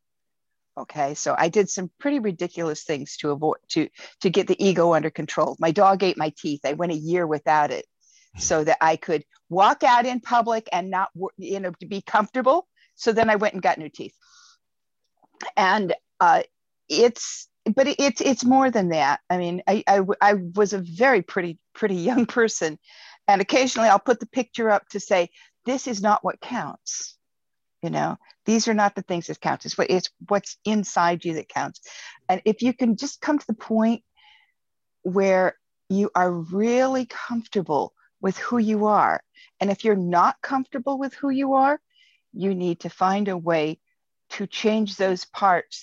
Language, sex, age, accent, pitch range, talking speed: English, female, 50-69, American, 180-245 Hz, 180 wpm